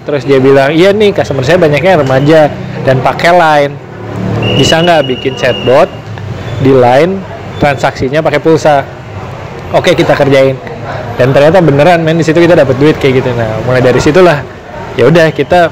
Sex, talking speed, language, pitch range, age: male, 160 wpm, Indonesian, 125-155 Hz, 20-39